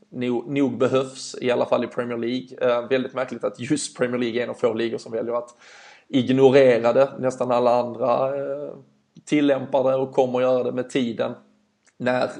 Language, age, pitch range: Swedish, 20-39, 120-140 Hz